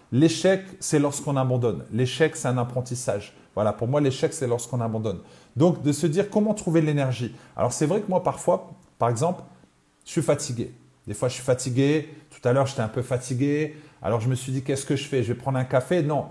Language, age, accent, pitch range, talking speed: French, 30-49, French, 130-175 Hz, 220 wpm